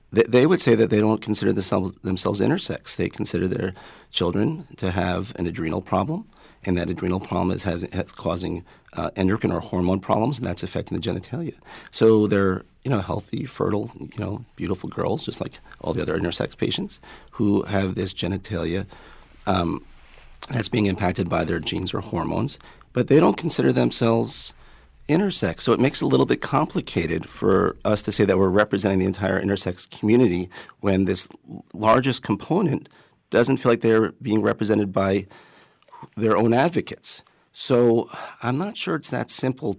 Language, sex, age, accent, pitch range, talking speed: English, male, 40-59, American, 90-110 Hz, 170 wpm